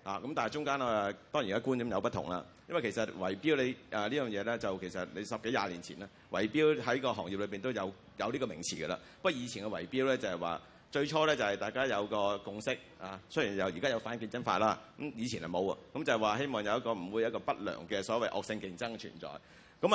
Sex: male